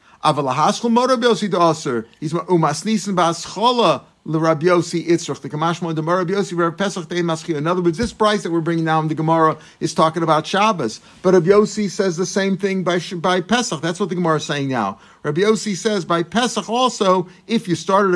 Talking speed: 130 wpm